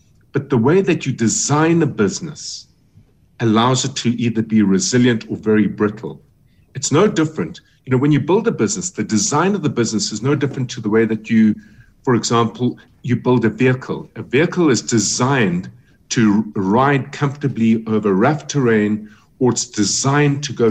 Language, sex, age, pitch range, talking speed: English, male, 50-69, 105-145 Hz, 175 wpm